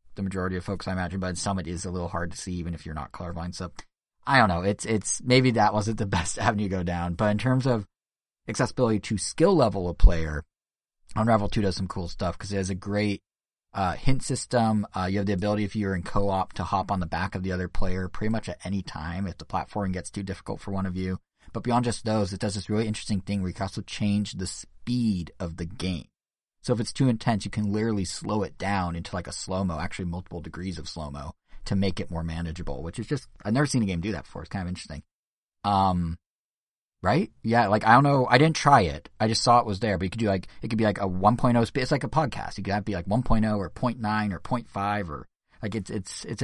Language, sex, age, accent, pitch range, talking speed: English, male, 30-49, American, 85-110 Hz, 255 wpm